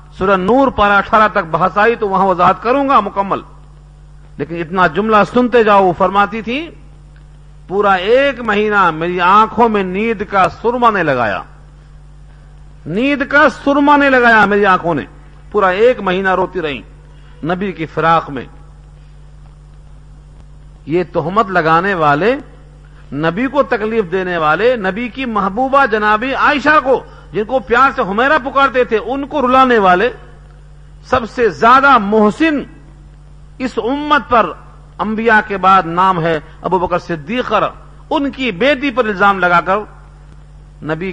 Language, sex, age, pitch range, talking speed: Urdu, male, 50-69, 150-220 Hz, 140 wpm